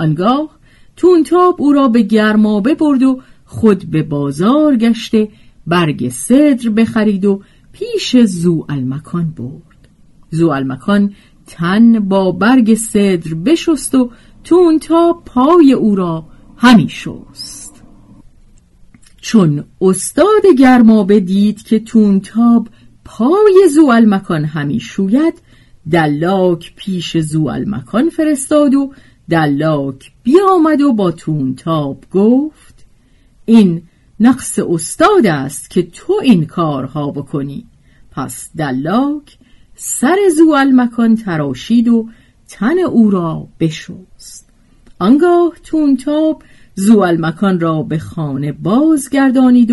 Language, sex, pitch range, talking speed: Persian, female, 170-270 Hz, 95 wpm